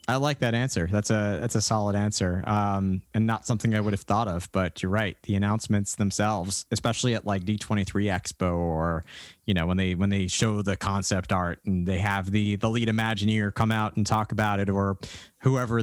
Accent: American